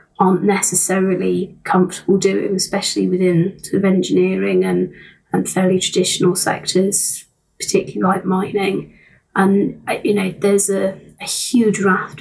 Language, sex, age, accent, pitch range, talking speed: English, female, 30-49, British, 180-195 Hz, 125 wpm